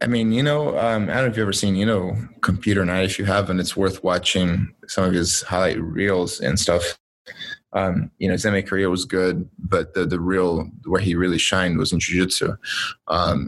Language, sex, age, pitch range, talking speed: English, male, 20-39, 85-100 Hz, 220 wpm